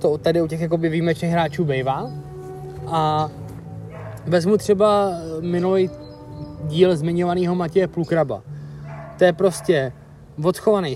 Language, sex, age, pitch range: Czech, male, 20-39, 150-185 Hz